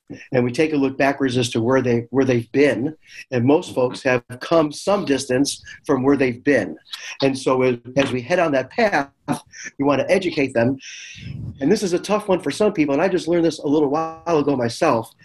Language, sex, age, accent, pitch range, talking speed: English, male, 40-59, American, 125-150 Hz, 220 wpm